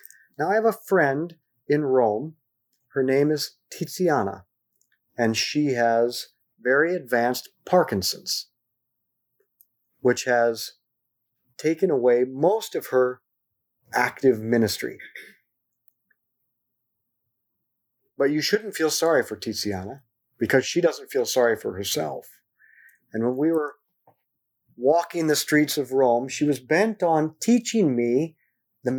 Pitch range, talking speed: 120-175 Hz, 115 wpm